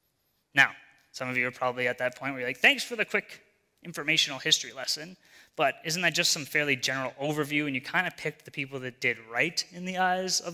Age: 30-49